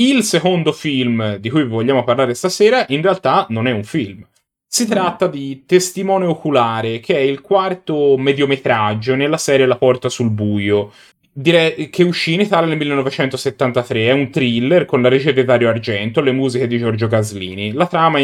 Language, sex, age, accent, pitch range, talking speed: Italian, male, 30-49, native, 115-155 Hz, 180 wpm